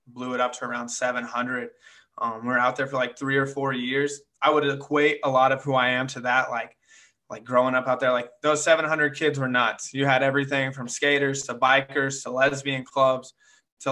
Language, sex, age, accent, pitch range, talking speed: English, male, 20-39, American, 125-140 Hz, 215 wpm